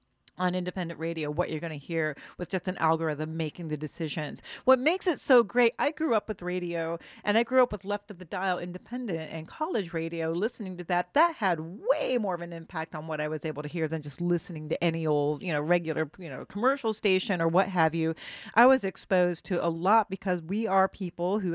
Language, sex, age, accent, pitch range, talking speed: English, female, 40-59, American, 160-210 Hz, 230 wpm